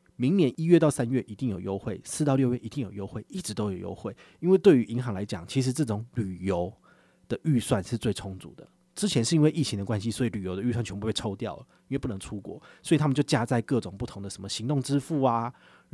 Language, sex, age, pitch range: Chinese, male, 30-49, 105-140 Hz